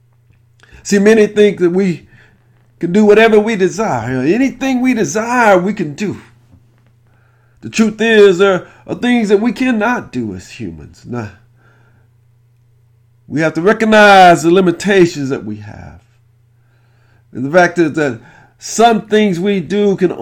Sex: male